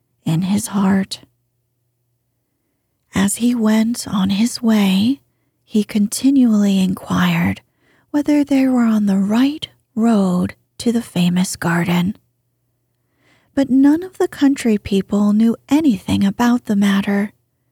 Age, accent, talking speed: 30-49, American, 115 wpm